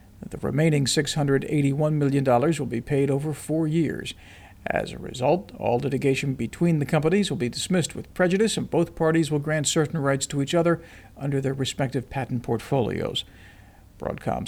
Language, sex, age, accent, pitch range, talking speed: English, male, 50-69, American, 125-155 Hz, 160 wpm